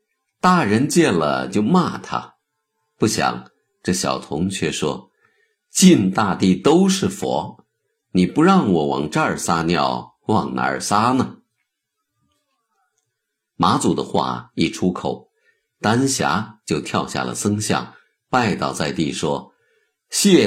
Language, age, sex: Chinese, 50-69, male